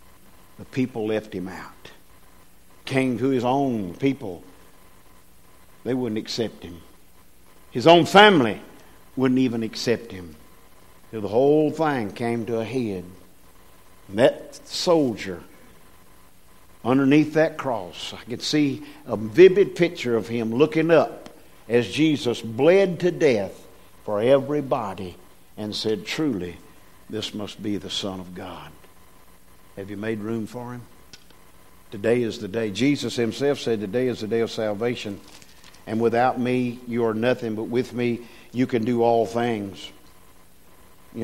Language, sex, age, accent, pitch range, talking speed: English, male, 50-69, American, 95-135 Hz, 140 wpm